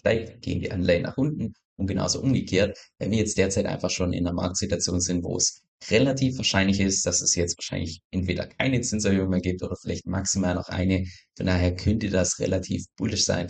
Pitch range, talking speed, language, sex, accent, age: 90-100 Hz, 190 wpm, German, male, German, 20-39